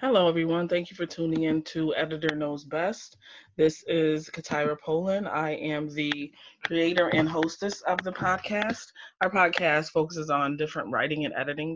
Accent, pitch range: American, 145-170 Hz